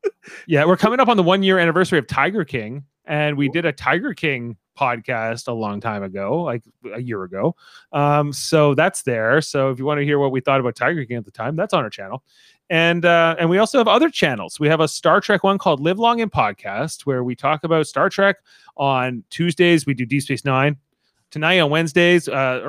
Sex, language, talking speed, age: male, English, 225 wpm, 30-49